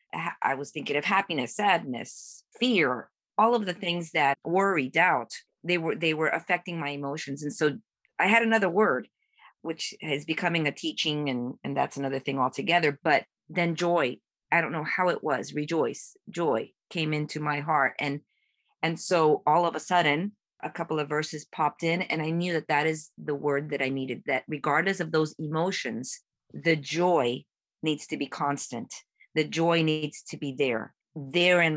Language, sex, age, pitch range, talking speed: English, female, 40-59, 140-165 Hz, 180 wpm